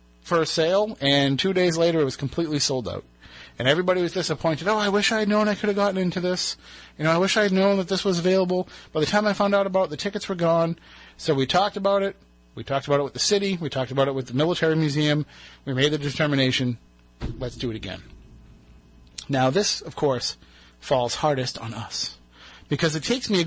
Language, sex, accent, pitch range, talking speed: English, male, American, 130-180 Hz, 235 wpm